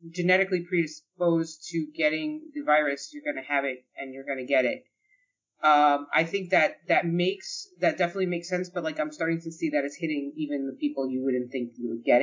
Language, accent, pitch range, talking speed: English, American, 140-180 Hz, 220 wpm